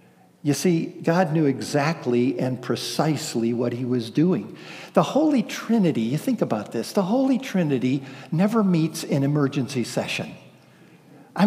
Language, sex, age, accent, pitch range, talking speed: English, male, 50-69, American, 135-190 Hz, 140 wpm